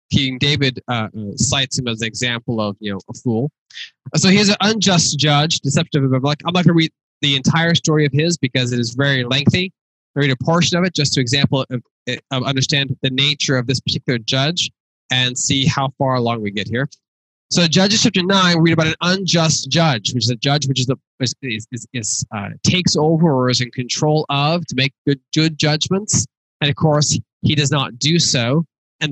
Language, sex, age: English, male, 20-39